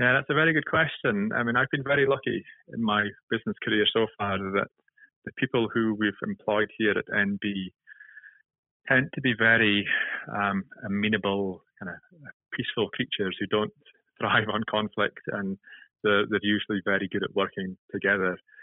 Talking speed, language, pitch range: 165 wpm, English, 100-145 Hz